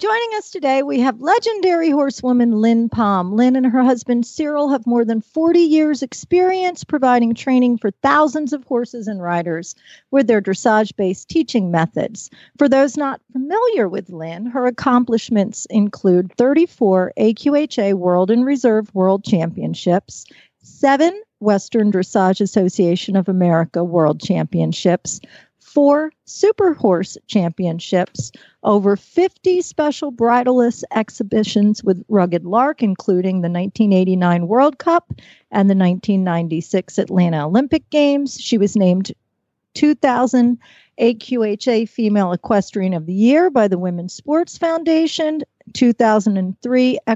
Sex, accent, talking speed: female, American, 120 wpm